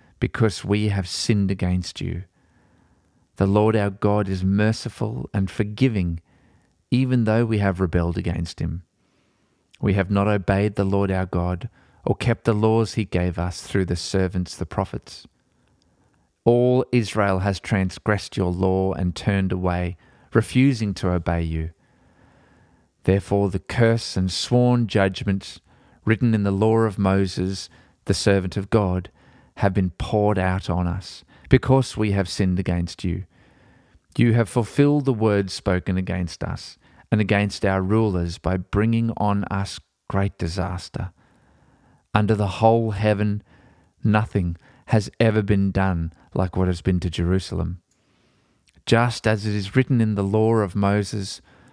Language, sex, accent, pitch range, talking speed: English, male, Australian, 90-110 Hz, 145 wpm